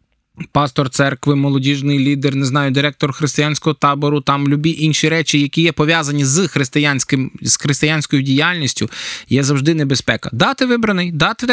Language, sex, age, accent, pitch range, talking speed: Ukrainian, male, 20-39, native, 145-185 Hz, 140 wpm